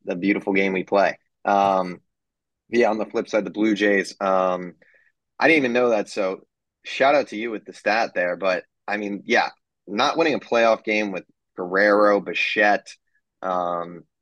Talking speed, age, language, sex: 175 wpm, 20-39, English, male